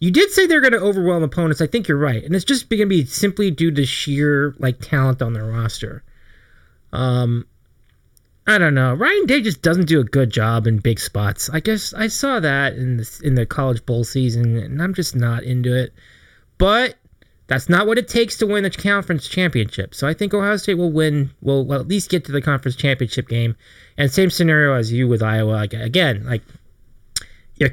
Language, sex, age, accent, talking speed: English, male, 30-49, American, 210 wpm